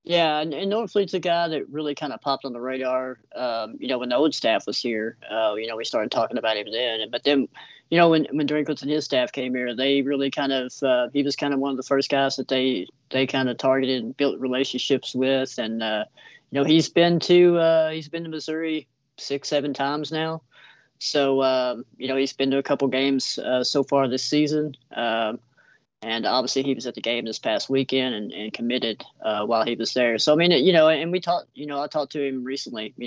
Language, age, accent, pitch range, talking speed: English, 30-49, American, 125-150 Hz, 245 wpm